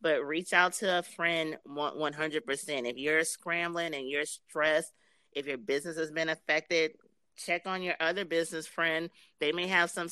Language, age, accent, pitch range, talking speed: English, 30-49, American, 145-175 Hz, 170 wpm